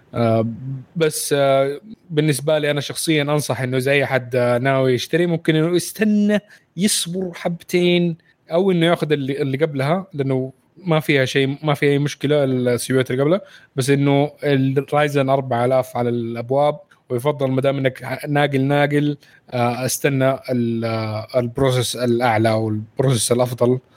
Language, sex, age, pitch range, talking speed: Arabic, male, 20-39, 120-145 Hz, 140 wpm